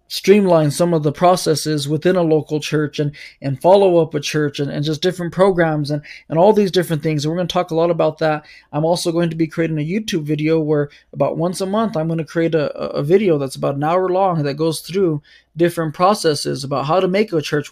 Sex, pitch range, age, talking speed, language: male, 150-180 Hz, 20-39, 245 wpm, English